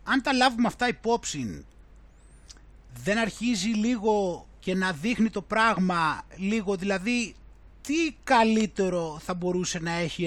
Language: Greek